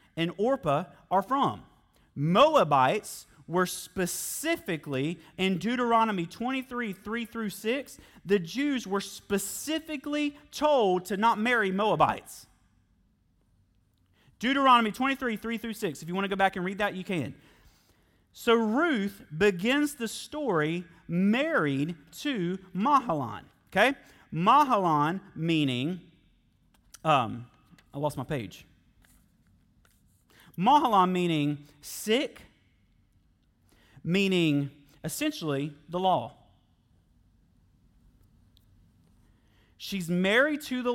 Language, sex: English, male